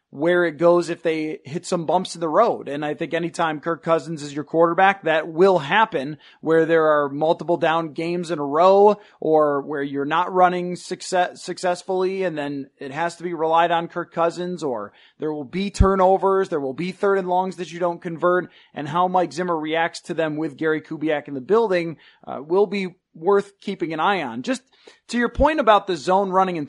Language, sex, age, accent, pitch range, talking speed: English, male, 30-49, American, 155-190 Hz, 210 wpm